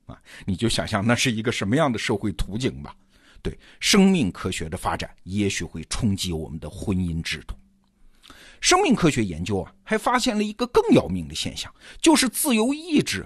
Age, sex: 50-69, male